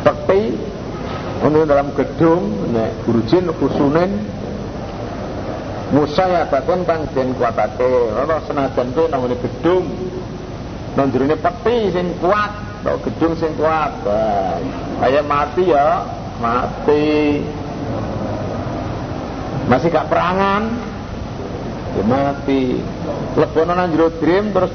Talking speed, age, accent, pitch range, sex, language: 120 wpm, 60-79, native, 120-180 Hz, male, Indonesian